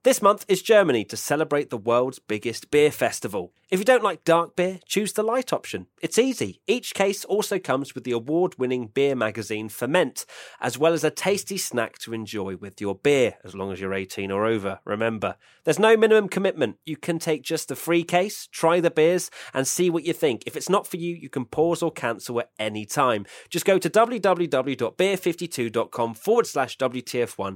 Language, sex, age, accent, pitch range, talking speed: English, male, 30-49, British, 110-170 Hz, 200 wpm